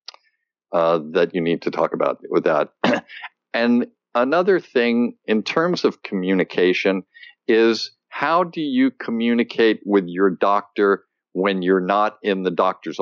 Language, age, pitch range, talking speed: English, 50-69, 90-115 Hz, 140 wpm